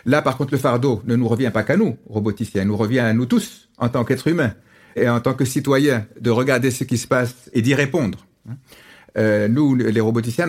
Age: 60-79